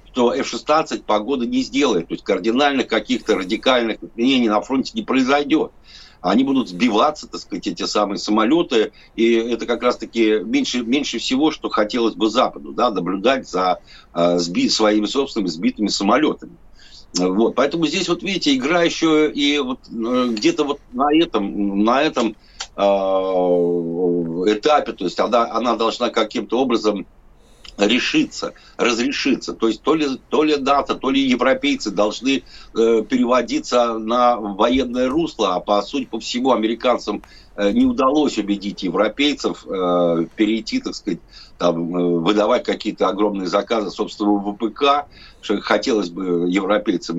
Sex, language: male, Russian